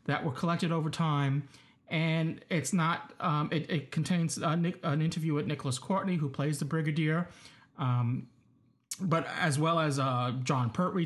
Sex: male